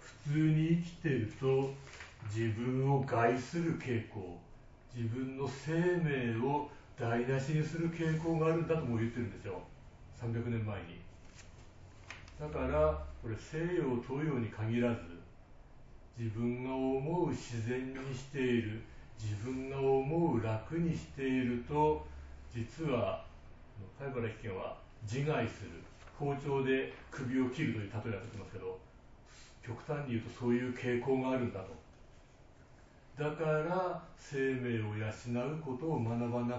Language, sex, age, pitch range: Japanese, male, 40-59, 110-140 Hz